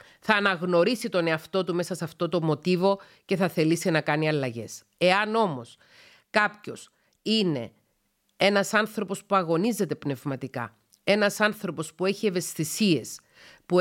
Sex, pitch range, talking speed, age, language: female, 170-220 Hz, 135 wpm, 40-59, Greek